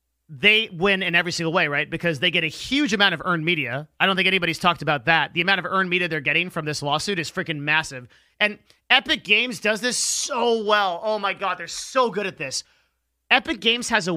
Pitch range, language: 160-210 Hz, English